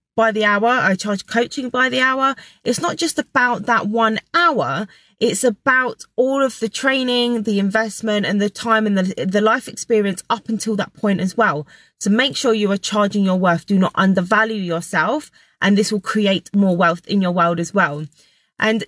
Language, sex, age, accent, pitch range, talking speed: English, female, 20-39, British, 190-235 Hz, 195 wpm